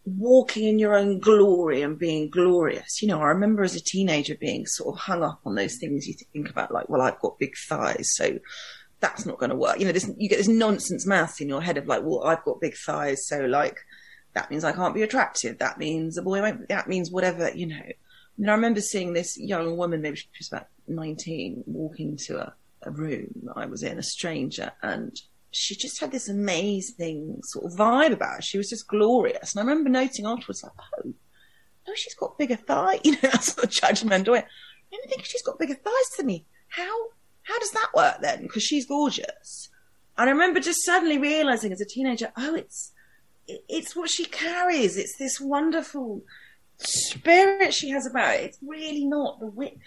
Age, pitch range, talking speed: 30-49, 190-310 Hz, 210 wpm